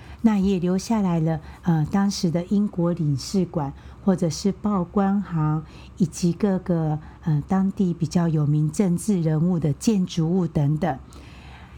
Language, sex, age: Chinese, female, 50-69